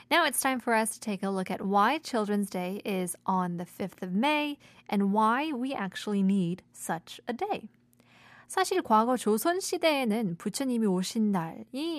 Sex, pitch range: female, 190-260 Hz